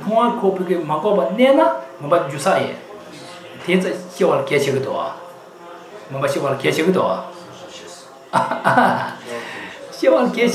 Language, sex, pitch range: English, male, 175-245 Hz